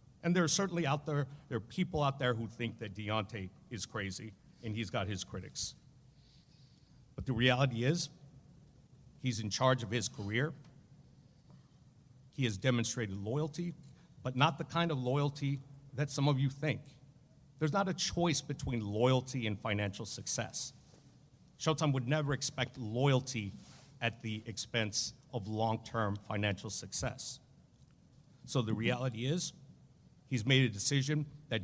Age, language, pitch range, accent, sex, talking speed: 50-69, English, 115-140 Hz, American, male, 145 wpm